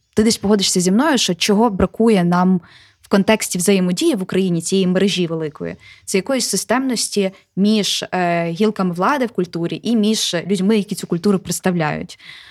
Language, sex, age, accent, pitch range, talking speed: Ukrainian, female, 20-39, native, 180-220 Hz, 160 wpm